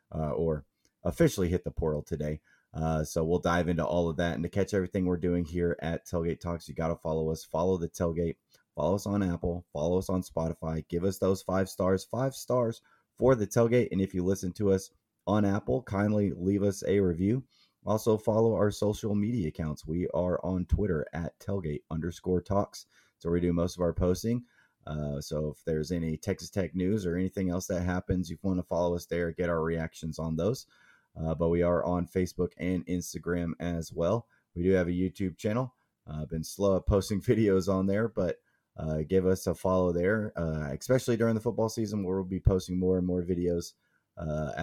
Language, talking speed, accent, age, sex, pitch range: English, 210 wpm, American, 30-49, male, 85-100 Hz